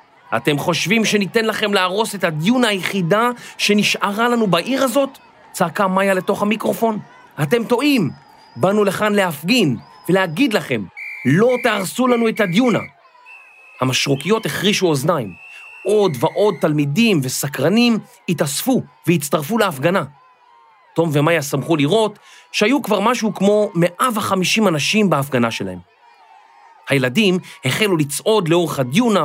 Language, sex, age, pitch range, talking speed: Hebrew, male, 40-59, 140-220 Hz, 115 wpm